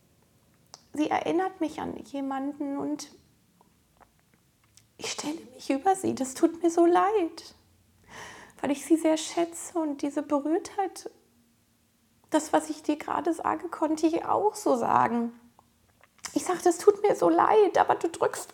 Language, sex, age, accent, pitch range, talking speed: German, female, 20-39, German, 265-345 Hz, 145 wpm